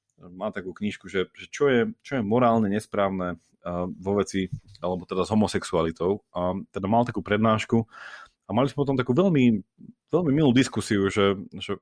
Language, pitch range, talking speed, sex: Slovak, 100-130 Hz, 170 wpm, male